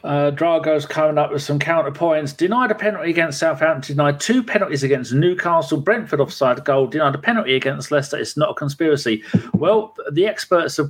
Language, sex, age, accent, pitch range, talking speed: English, male, 40-59, British, 125-170 Hz, 185 wpm